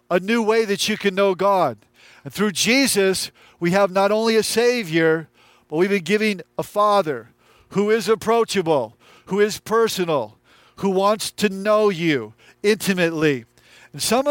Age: 50-69